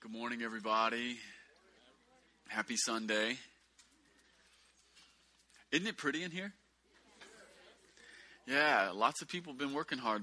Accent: American